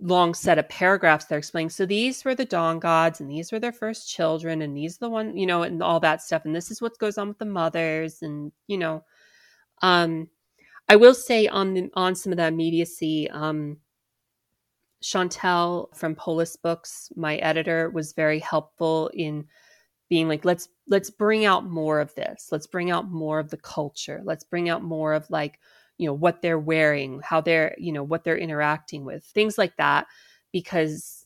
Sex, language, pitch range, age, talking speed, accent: female, English, 155-180 Hz, 30-49, 195 wpm, American